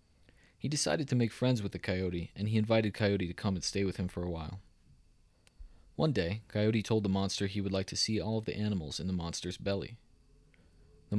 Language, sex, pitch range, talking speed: English, male, 90-110 Hz, 220 wpm